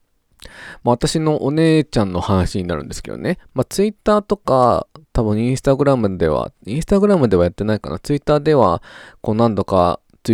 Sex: male